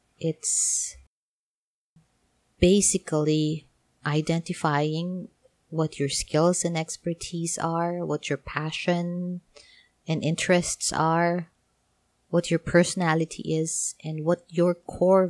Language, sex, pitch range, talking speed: English, female, 145-175 Hz, 90 wpm